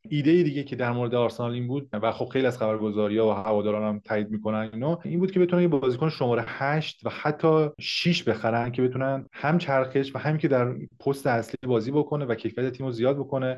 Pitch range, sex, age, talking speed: 115-140 Hz, male, 30-49, 210 wpm